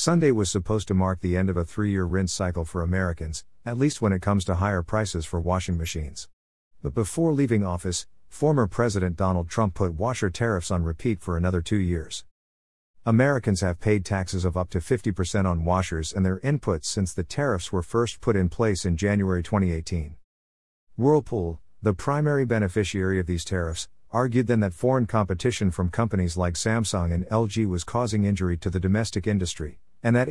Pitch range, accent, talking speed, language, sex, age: 90-110 Hz, American, 185 wpm, English, male, 50-69